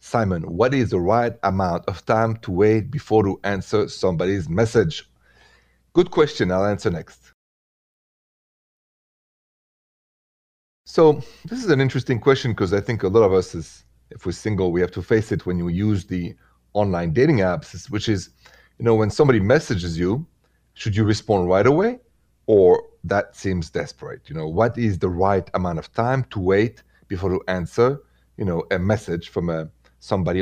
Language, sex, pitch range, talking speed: English, male, 90-125 Hz, 170 wpm